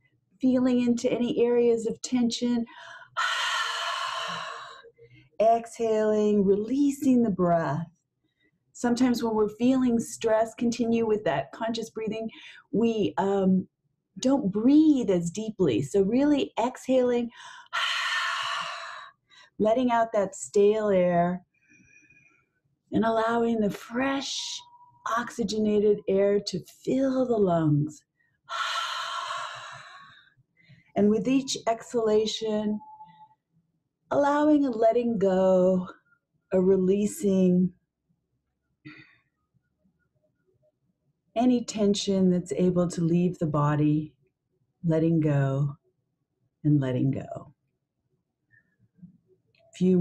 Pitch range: 175-255 Hz